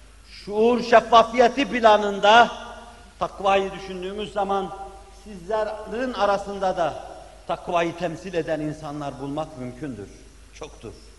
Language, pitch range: Turkish, 190-240 Hz